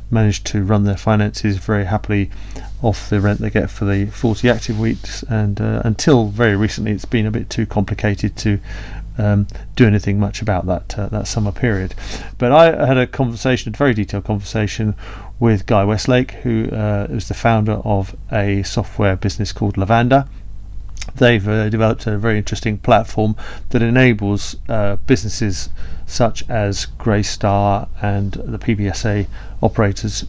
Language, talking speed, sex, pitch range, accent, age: English, 160 wpm, male, 100-115 Hz, British, 40-59